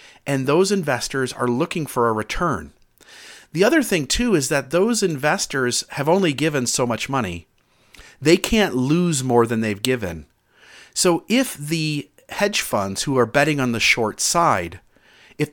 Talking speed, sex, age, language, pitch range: 160 wpm, male, 40-59, English, 115-155 Hz